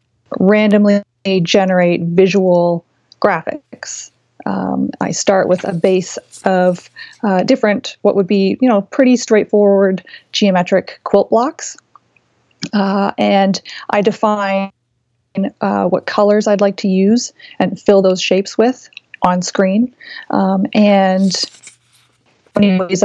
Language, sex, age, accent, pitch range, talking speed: English, female, 30-49, American, 185-215 Hz, 115 wpm